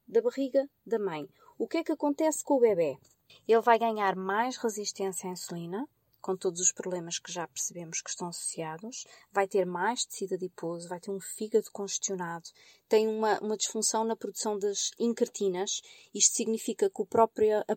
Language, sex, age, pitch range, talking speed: Portuguese, female, 20-39, 195-255 Hz, 180 wpm